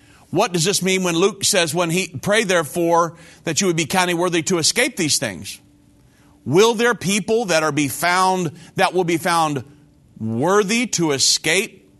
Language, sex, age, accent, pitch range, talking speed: English, male, 40-59, American, 150-200 Hz, 175 wpm